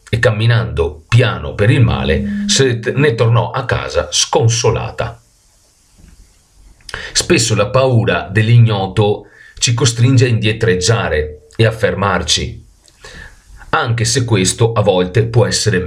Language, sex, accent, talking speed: Italian, male, native, 115 wpm